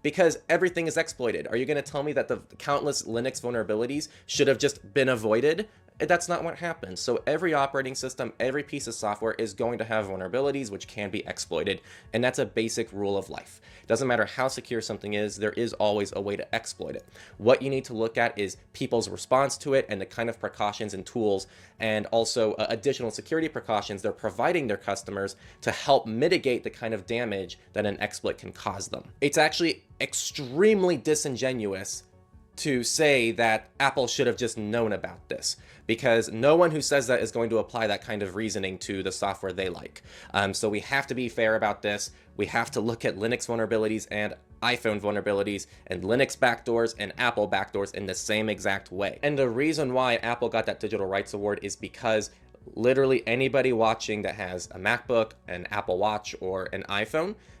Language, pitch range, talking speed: English, 100-130 Hz, 195 wpm